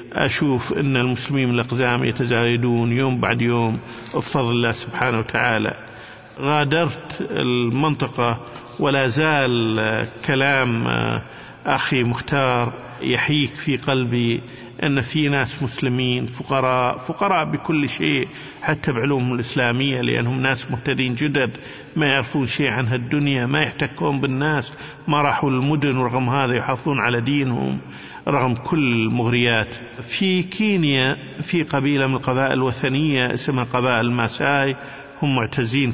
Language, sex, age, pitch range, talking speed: Arabic, male, 50-69, 120-140 Hz, 115 wpm